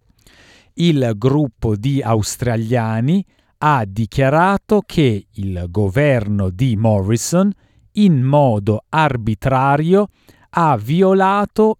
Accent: native